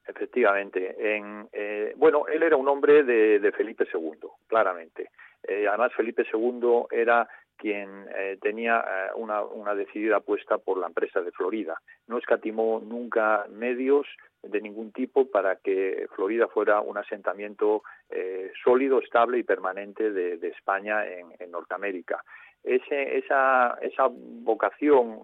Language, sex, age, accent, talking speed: Spanish, male, 40-59, Spanish, 135 wpm